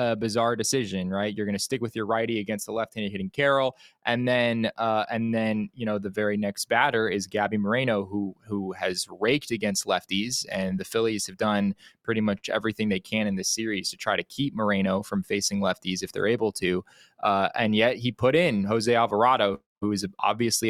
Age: 20-39